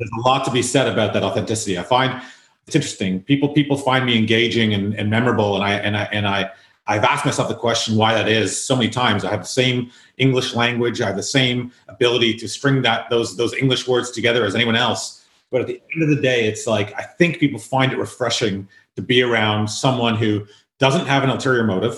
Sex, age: male, 30-49